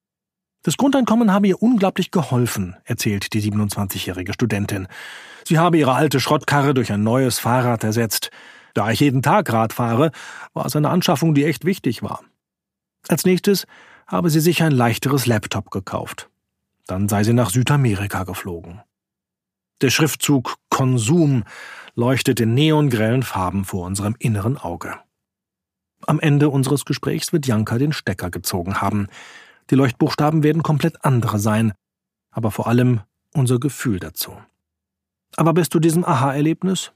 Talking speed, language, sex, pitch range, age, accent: 140 wpm, German, male, 105-155 Hz, 40-59, German